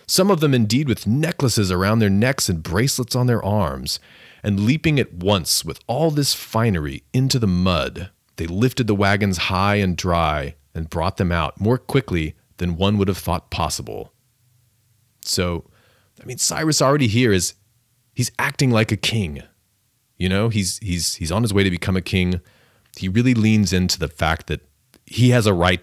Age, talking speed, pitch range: 30-49, 185 wpm, 85-120 Hz